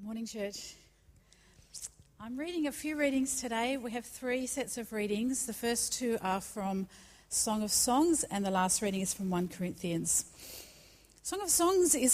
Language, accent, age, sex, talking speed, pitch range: English, Australian, 40-59, female, 170 wpm, 200-260 Hz